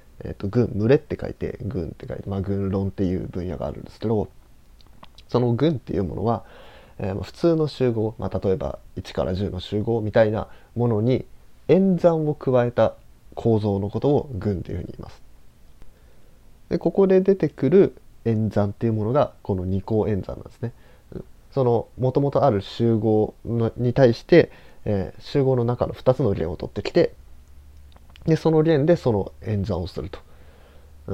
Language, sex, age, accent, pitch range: Japanese, male, 20-39, native, 90-135 Hz